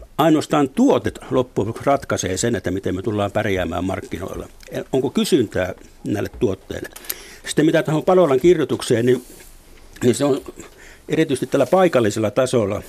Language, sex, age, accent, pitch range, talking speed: Finnish, male, 60-79, native, 105-140 Hz, 130 wpm